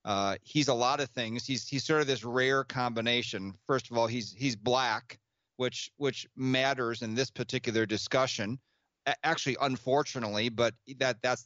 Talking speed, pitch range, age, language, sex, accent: 160 wpm, 115-140 Hz, 40-59, English, male, American